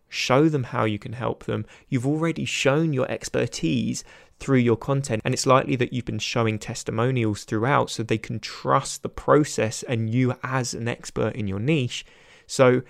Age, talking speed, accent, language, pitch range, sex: 20-39, 180 wpm, British, English, 115-135 Hz, male